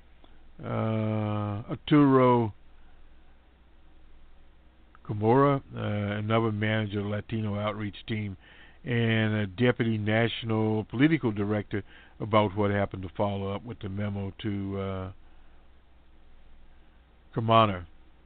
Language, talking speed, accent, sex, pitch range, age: English, 95 wpm, American, male, 95-115 Hz, 50-69